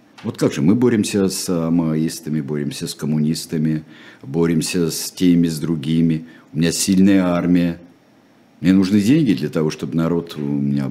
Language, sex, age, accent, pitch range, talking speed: Russian, male, 50-69, native, 80-100 Hz, 155 wpm